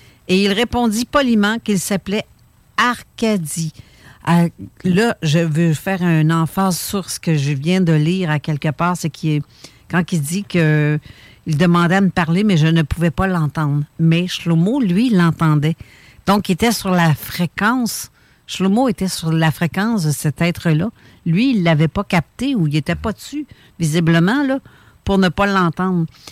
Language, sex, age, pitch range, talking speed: French, female, 60-79, 165-210 Hz, 165 wpm